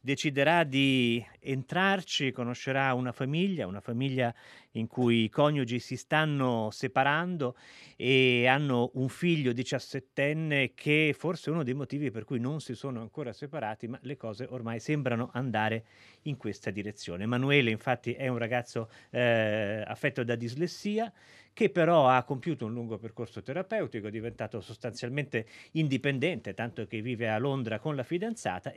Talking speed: 150 wpm